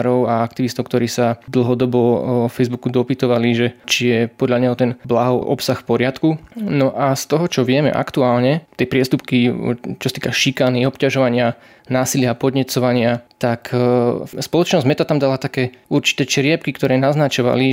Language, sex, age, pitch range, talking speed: Slovak, male, 20-39, 125-140 Hz, 150 wpm